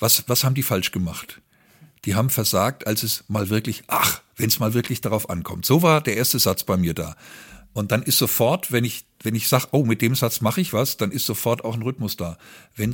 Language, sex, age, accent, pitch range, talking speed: German, male, 50-69, German, 100-135 Hz, 240 wpm